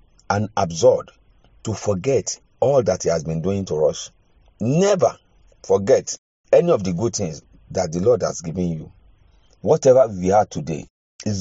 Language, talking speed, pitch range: English, 160 wpm, 95-135 Hz